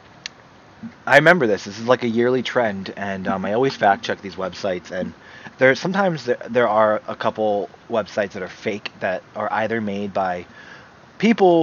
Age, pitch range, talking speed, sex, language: 30-49, 105-125 Hz, 180 wpm, male, English